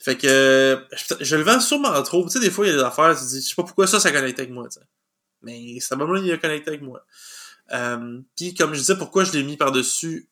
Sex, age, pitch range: male, 20-39, 130-160 Hz